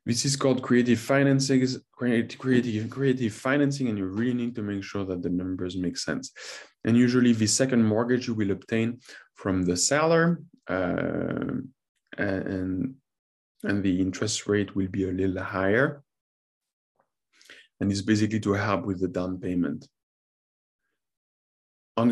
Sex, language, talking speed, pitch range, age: male, English, 135 wpm, 95-125 Hz, 20-39